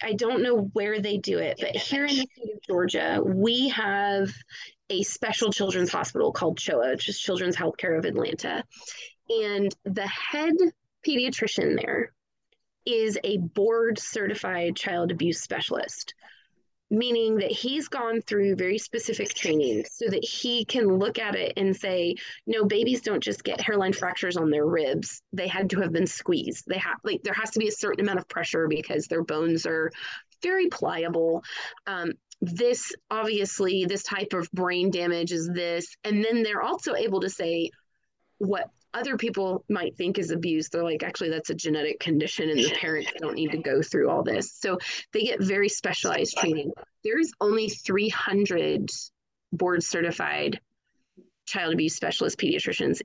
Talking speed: 165 wpm